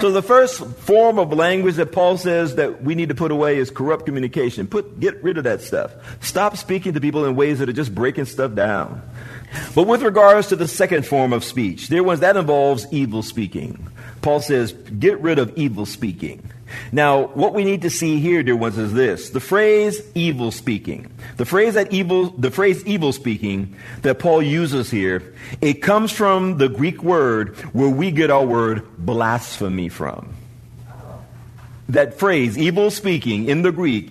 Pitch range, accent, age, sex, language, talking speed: 120-180 Hz, American, 50-69, male, English, 185 wpm